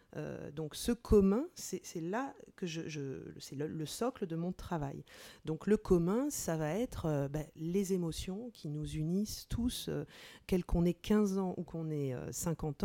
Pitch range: 160-210 Hz